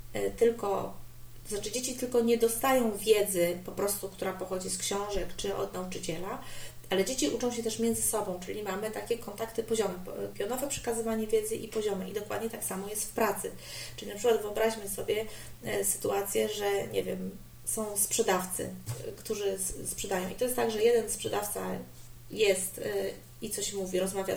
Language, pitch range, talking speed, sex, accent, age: Polish, 185-235 Hz, 160 wpm, female, native, 30-49